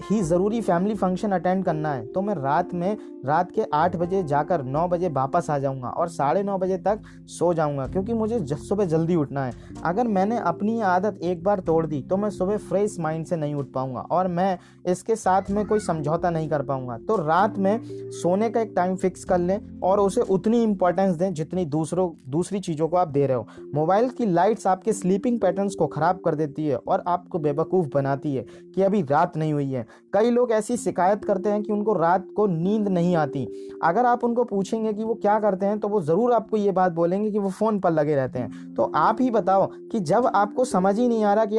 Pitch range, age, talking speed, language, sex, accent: 160-210 Hz, 20-39, 225 wpm, Hindi, male, native